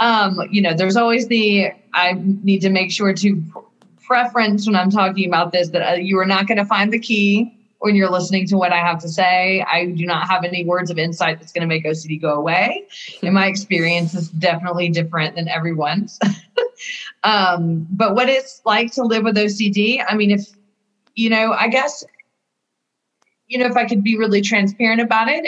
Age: 30-49